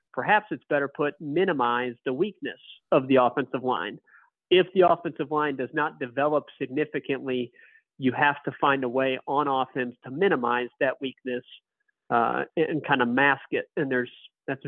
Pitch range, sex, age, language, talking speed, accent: 125-155 Hz, male, 40-59, English, 165 wpm, American